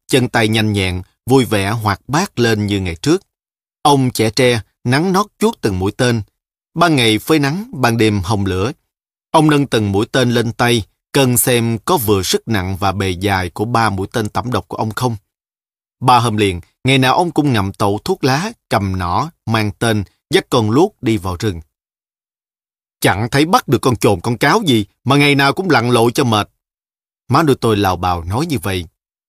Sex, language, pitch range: male, Vietnamese, 105-135 Hz